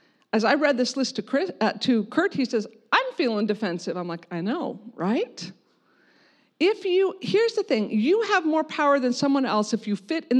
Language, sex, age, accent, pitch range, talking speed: English, female, 50-69, American, 195-265 Hz, 200 wpm